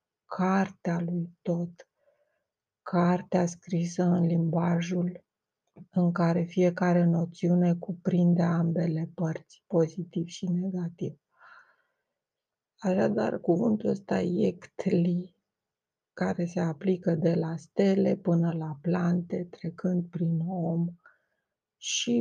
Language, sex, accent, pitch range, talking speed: Romanian, female, native, 170-190 Hz, 90 wpm